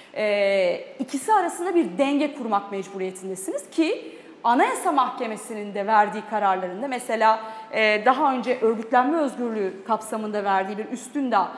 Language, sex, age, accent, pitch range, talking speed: Turkish, female, 30-49, native, 210-275 Hz, 120 wpm